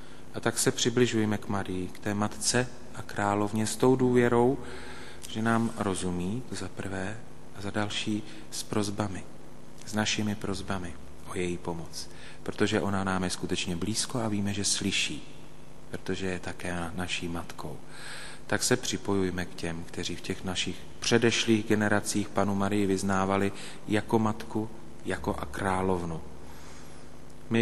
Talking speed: 145 wpm